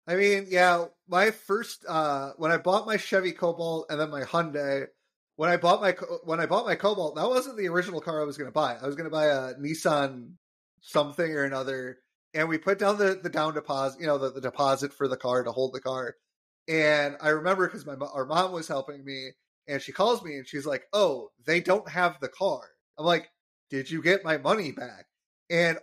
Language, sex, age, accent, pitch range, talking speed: English, male, 30-49, American, 150-205 Hz, 230 wpm